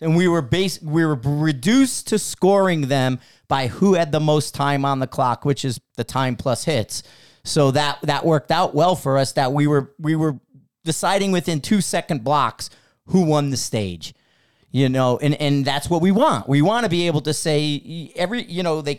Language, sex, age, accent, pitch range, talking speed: English, male, 40-59, American, 135-175 Hz, 210 wpm